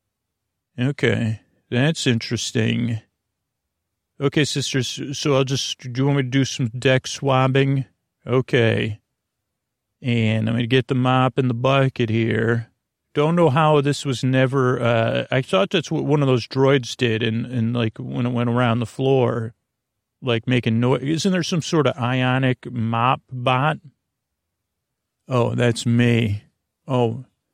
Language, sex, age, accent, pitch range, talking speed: English, male, 40-59, American, 115-135 Hz, 150 wpm